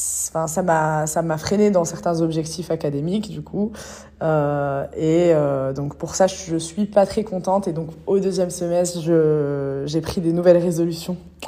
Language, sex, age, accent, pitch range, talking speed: French, female, 20-39, French, 165-205 Hz, 180 wpm